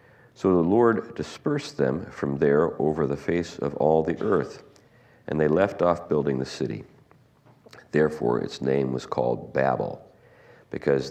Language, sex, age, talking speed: English, male, 50-69, 150 wpm